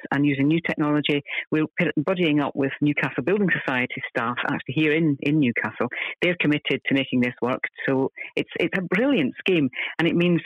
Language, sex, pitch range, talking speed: English, female, 135-165 Hz, 185 wpm